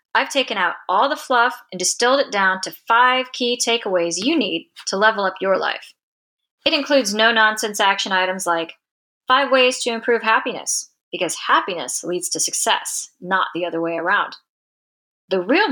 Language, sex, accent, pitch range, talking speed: English, female, American, 180-245 Hz, 170 wpm